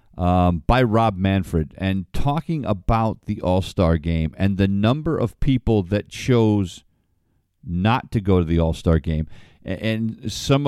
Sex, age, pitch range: male, 50-69, 90-110 Hz